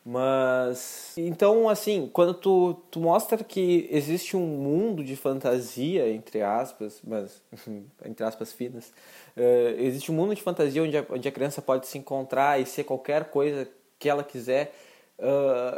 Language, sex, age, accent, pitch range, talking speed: Portuguese, male, 20-39, Brazilian, 125-160 Hz, 145 wpm